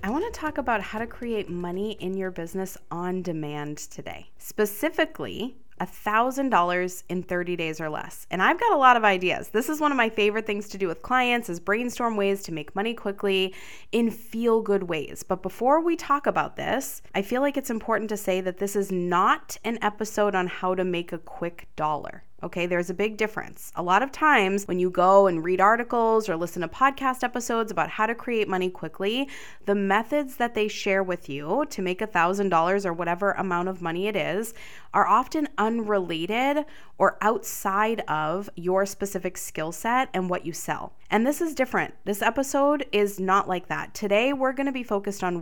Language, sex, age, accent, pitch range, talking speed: English, female, 20-39, American, 180-235 Hz, 195 wpm